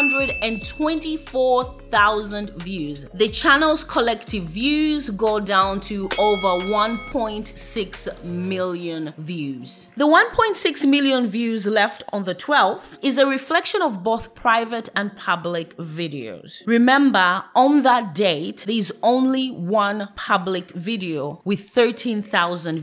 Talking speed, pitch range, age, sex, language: 115 wpm, 185-280 Hz, 30-49, female, English